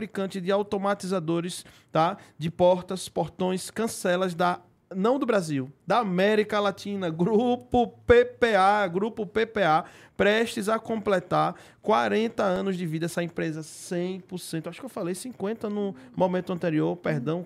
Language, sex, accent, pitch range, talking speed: Portuguese, male, Brazilian, 160-200 Hz, 130 wpm